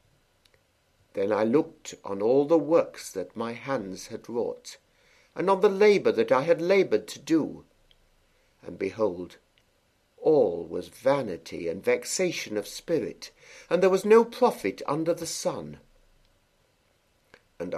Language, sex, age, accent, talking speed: English, male, 60-79, British, 135 wpm